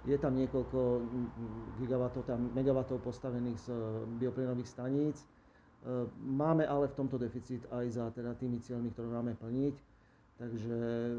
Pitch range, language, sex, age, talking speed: 120-130 Hz, Slovak, male, 40-59, 125 wpm